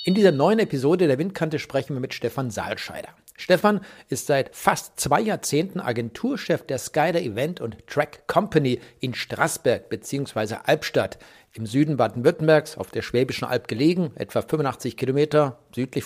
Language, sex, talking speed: German, male, 150 wpm